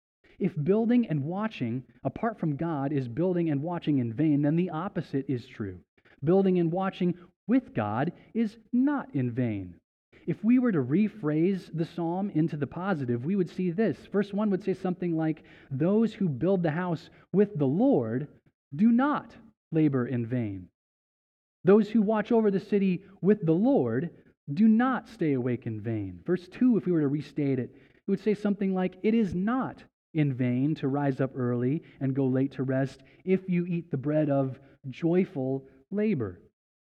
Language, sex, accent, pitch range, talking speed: English, male, American, 135-195 Hz, 180 wpm